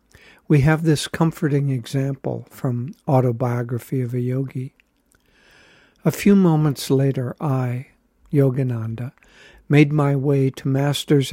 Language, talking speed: English, 110 wpm